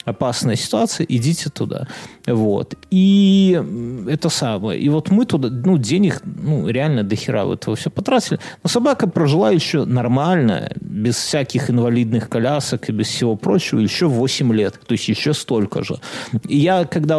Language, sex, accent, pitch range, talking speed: Russian, male, native, 115-165 Hz, 155 wpm